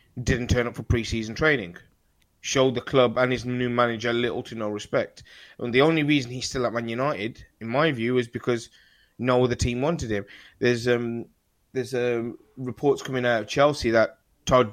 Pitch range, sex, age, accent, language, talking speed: 115-135 Hz, male, 20-39, British, English, 205 wpm